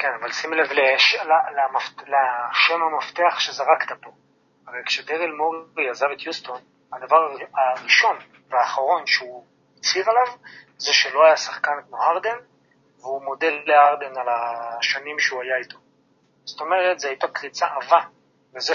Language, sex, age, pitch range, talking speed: Hebrew, male, 30-49, 130-165 Hz, 130 wpm